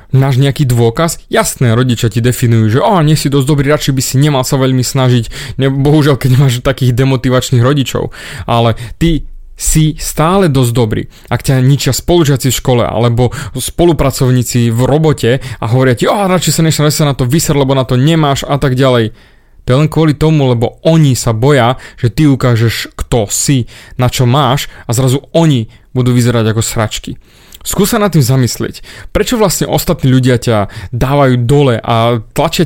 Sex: male